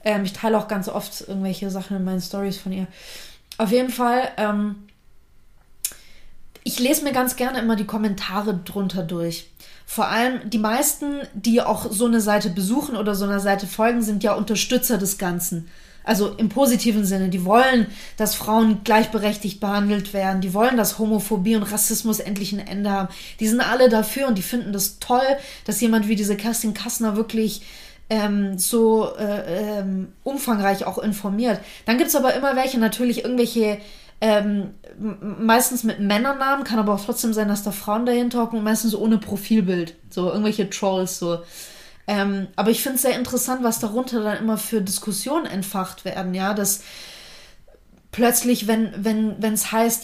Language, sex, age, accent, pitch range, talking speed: German, female, 20-39, German, 200-235 Hz, 170 wpm